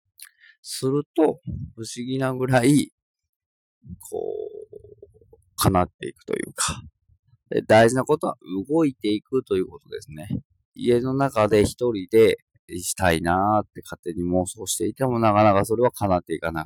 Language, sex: Japanese, male